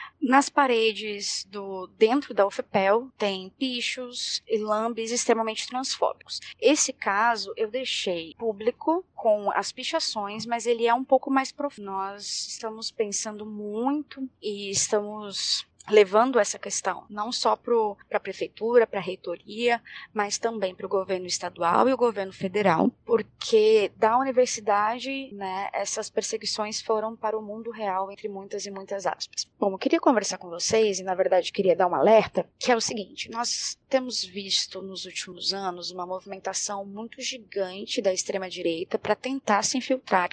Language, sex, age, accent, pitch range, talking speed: Portuguese, female, 20-39, Brazilian, 195-240 Hz, 155 wpm